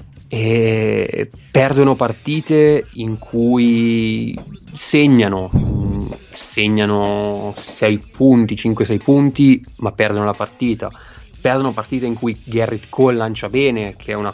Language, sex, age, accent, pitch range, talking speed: Italian, male, 20-39, native, 100-120 Hz, 110 wpm